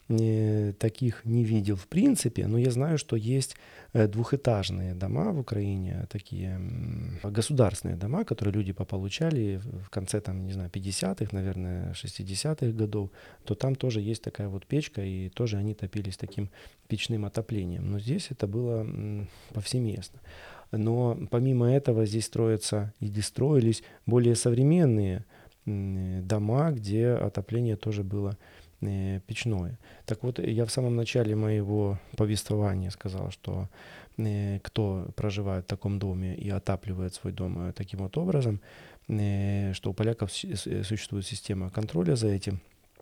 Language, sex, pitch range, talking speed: Russian, male, 100-120 Hz, 130 wpm